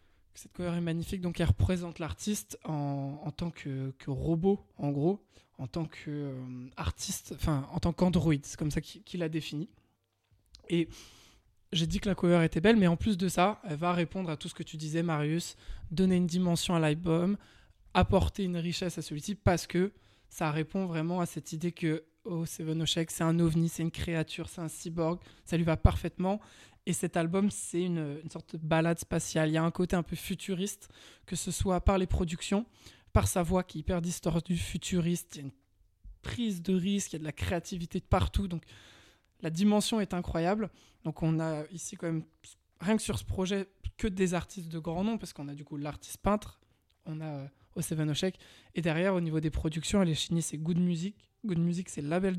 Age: 20-39